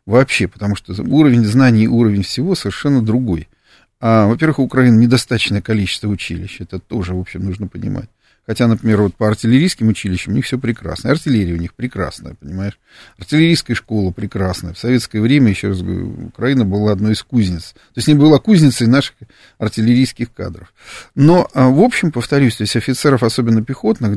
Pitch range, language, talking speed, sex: 100-125 Hz, Russian, 175 wpm, male